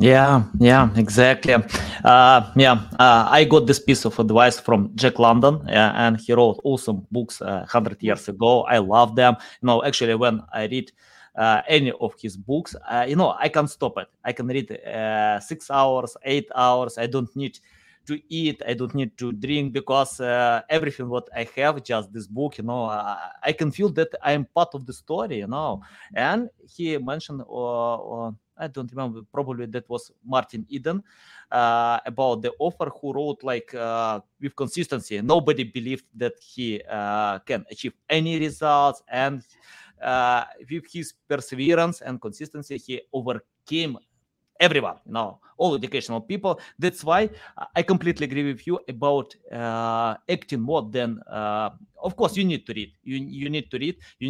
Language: English